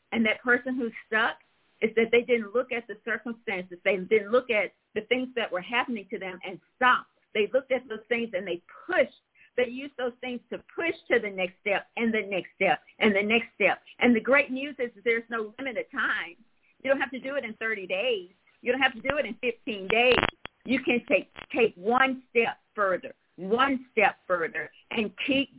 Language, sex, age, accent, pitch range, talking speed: English, female, 50-69, American, 195-255 Hz, 215 wpm